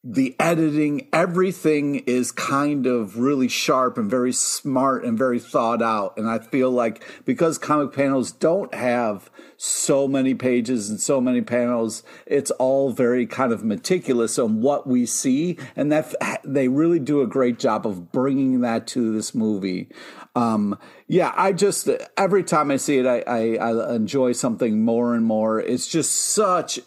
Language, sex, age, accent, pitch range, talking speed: English, male, 50-69, American, 125-165 Hz, 170 wpm